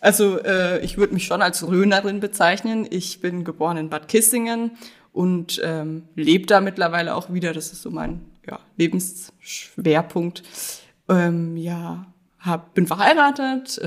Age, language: 20-39, German